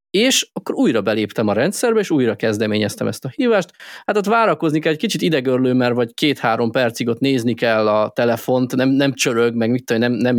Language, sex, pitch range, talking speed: Hungarian, male, 115-150 Hz, 200 wpm